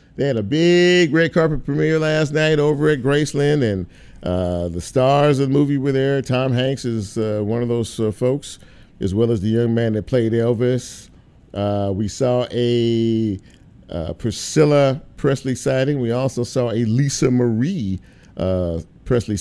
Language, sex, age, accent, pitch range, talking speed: English, male, 50-69, American, 100-130 Hz, 170 wpm